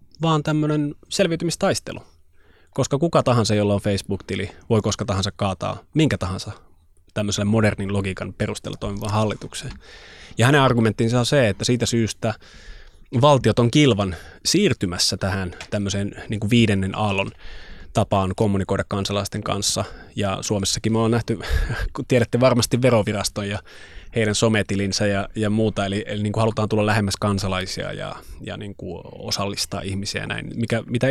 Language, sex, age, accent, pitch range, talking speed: Finnish, male, 20-39, native, 95-115 Hz, 145 wpm